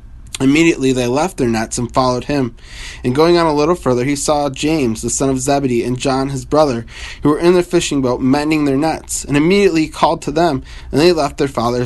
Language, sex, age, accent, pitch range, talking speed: English, male, 20-39, American, 115-150 Hz, 230 wpm